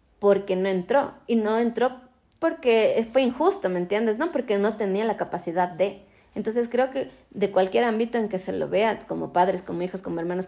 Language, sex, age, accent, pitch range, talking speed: Spanish, female, 20-39, Mexican, 195-245 Hz, 200 wpm